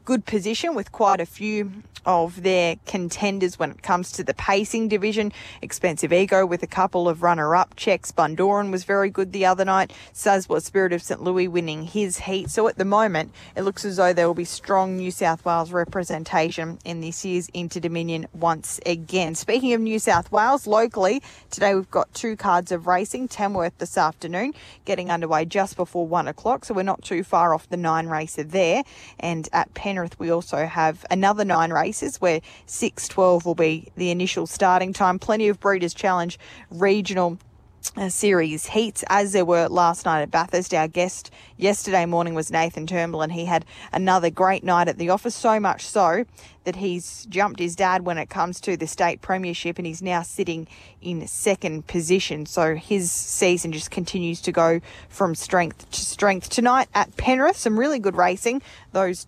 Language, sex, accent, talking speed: English, female, Australian, 185 wpm